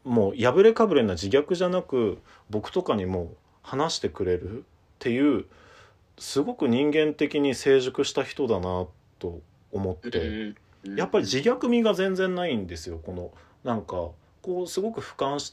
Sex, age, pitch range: male, 40-59, 95-155 Hz